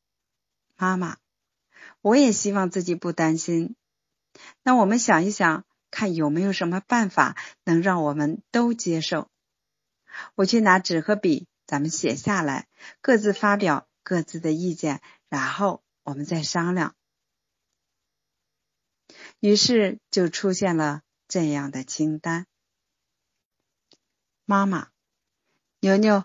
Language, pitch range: Chinese, 160-210 Hz